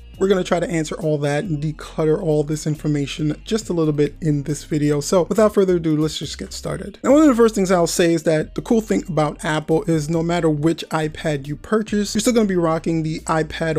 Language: English